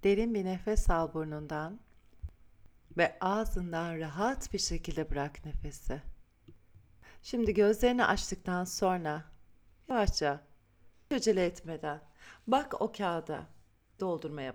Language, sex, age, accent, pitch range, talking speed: Turkish, female, 40-59, native, 150-225 Hz, 100 wpm